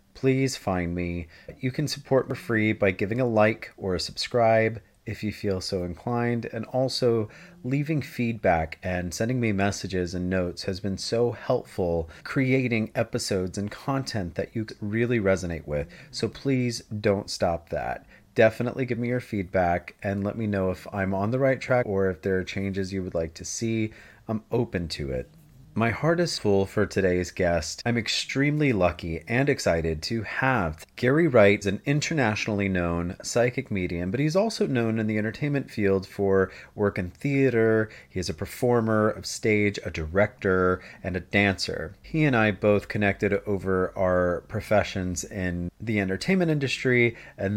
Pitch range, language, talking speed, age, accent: 95-120 Hz, English, 170 wpm, 30-49, American